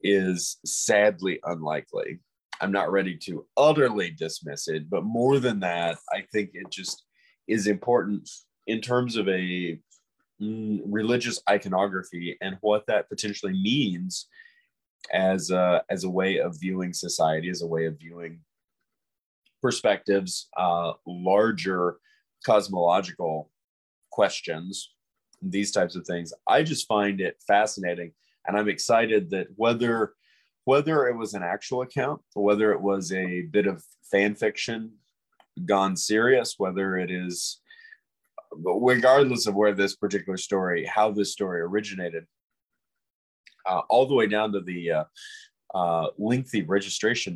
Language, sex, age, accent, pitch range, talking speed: English, male, 30-49, American, 90-115 Hz, 130 wpm